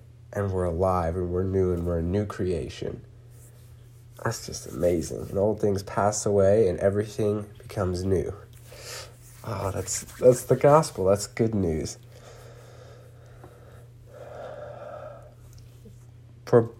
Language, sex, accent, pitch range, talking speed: English, male, American, 105-120 Hz, 120 wpm